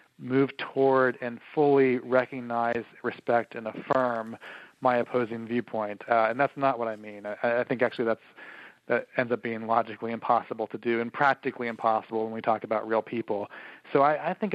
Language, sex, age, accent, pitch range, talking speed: English, male, 40-59, American, 115-130 Hz, 180 wpm